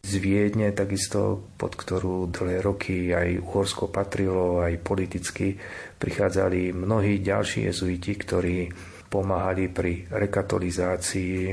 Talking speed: 100 wpm